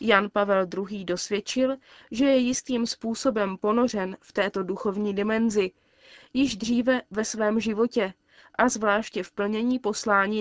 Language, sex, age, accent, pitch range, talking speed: Czech, female, 20-39, native, 200-235 Hz, 135 wpm